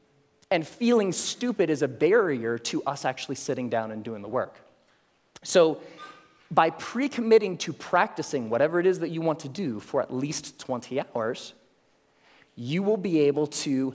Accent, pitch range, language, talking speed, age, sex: American, 125-185 Hz, Hindi, 165 wpm, 30-49, male